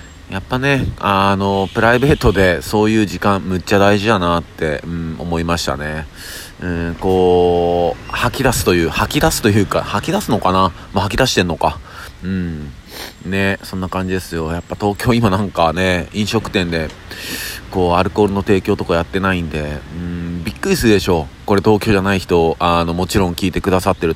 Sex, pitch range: male, 80-100 Hz